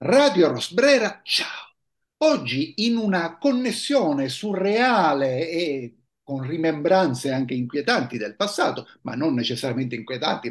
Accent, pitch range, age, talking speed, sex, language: native, 135-210 Hz, 50-69, 110 wpm, male, Italian